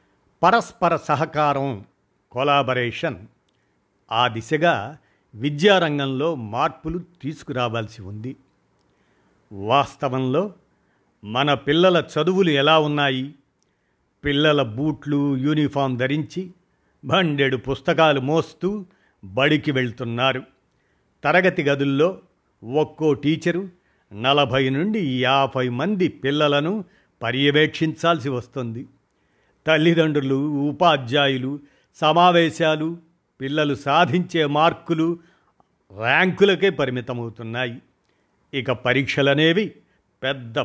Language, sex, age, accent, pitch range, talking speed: Telugu, male, 50-69, native, 130-165 Hz, 70 wpm